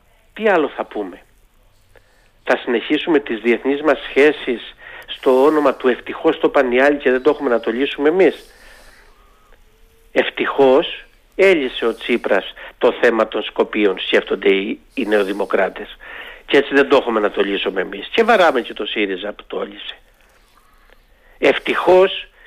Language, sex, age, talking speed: Greek, male, 50-69, 145 wpm